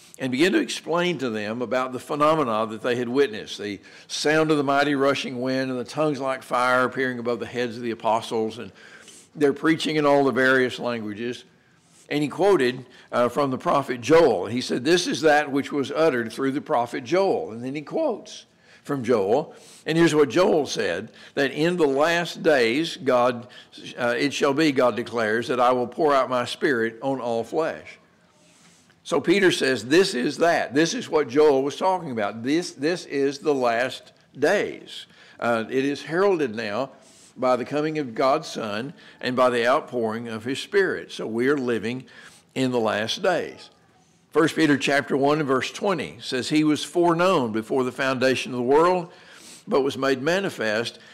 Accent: American